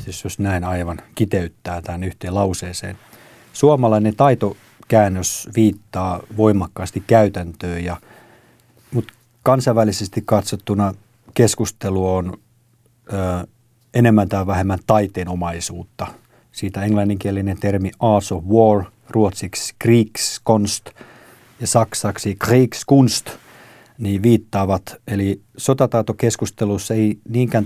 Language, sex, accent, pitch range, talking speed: Finnish, male, native, 95-115 Hz, 85 wpm